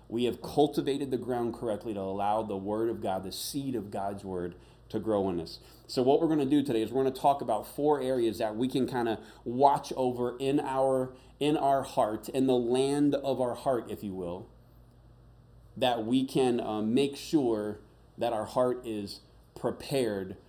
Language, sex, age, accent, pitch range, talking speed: English, male, 20-39, American, 110-135 Hz, 200 wpm